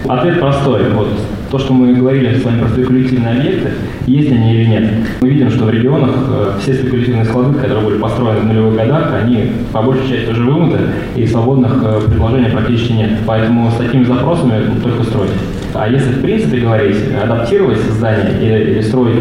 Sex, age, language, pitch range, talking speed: male, 20-39, Russian, 110-125 Hz, 175 wpm